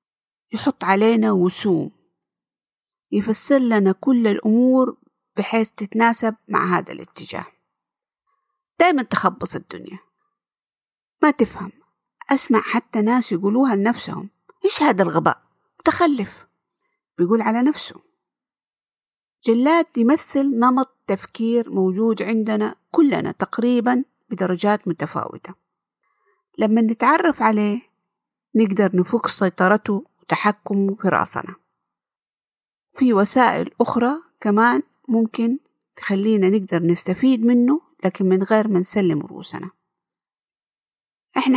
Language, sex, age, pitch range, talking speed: Arabic, female, 50-69, 195-265 Hz, 90 wpm